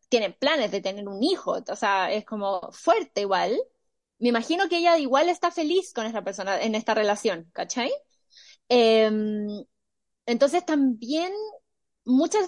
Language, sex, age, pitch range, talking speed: Spanish, female, 20-39, 240-320 Hz, 145 wpm